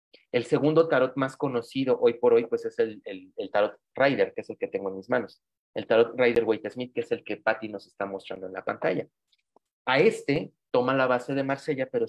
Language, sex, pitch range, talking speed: Spanish, male, 110-155 Hz, 235 wpm